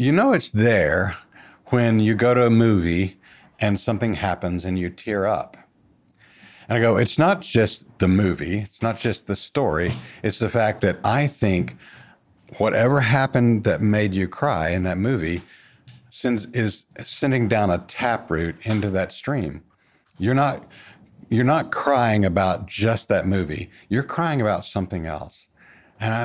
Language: English